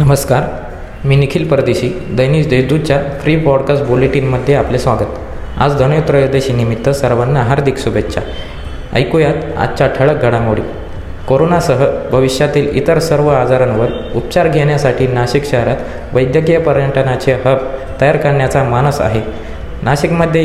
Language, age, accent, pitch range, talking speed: Marathi, 20-39, native, 125-145 Hz, 110 wpm